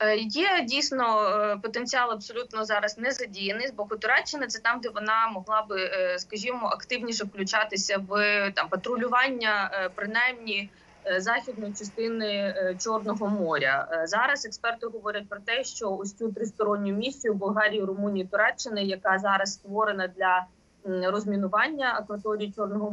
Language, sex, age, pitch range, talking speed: Ukrainian, female, 20-39, 190-225 Hz, 125 wpm